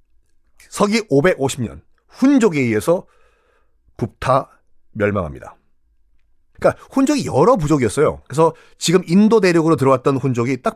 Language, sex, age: Korean, male, 40-59